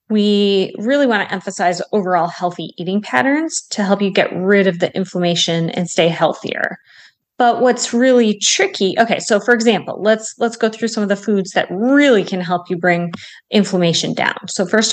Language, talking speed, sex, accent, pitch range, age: Italian, 185 wpm, female, American, 180-220 Hz, 30-49